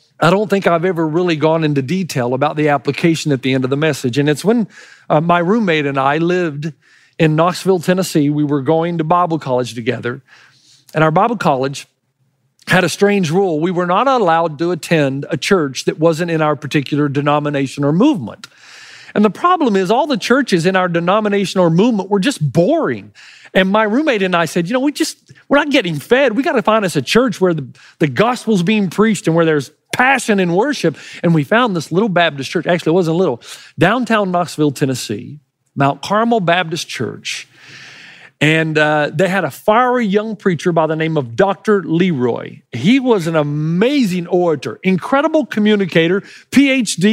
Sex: male